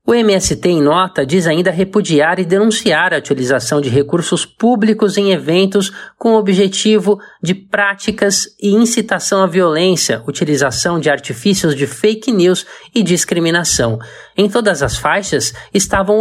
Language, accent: Portuguese, Brazilian